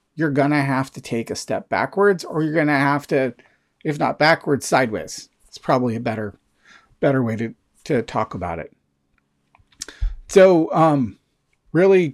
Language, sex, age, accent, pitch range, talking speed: English, male, 40-59, American, 130-160 Hz, 165 wpm